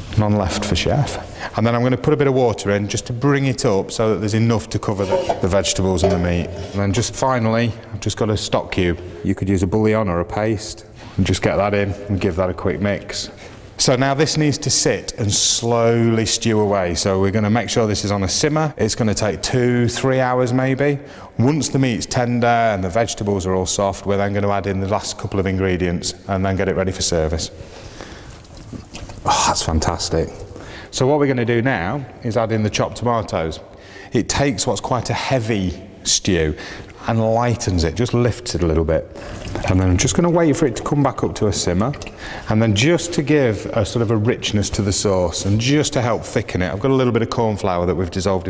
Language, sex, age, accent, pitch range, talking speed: English, male, 30-49, British, 95-120 Hz, 240 wpm